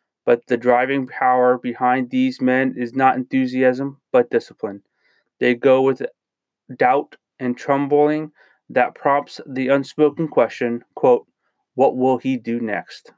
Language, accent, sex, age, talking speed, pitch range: English, American, male, 30-49, 130 wpm, 125-150 Hz